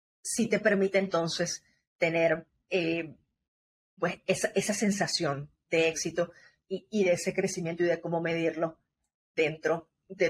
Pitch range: 170-205 Hz